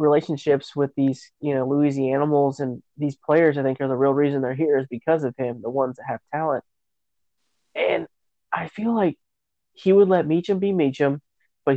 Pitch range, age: 130-150 Hz, 20-39